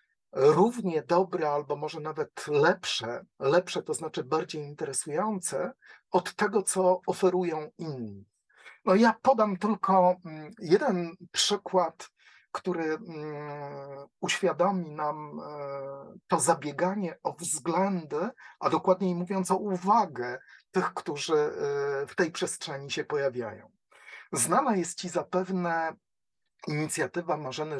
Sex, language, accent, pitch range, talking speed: male, Polish, native, 140-185 Hz, 100 wpm